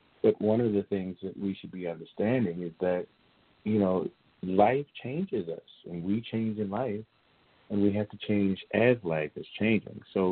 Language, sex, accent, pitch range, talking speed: English, male, American, 95-110 Hz, 185 wpm